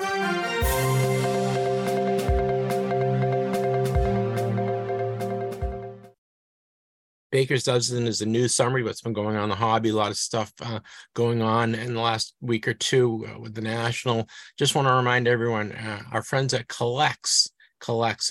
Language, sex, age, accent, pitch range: English, male, 50-69, American, 105-125 Hz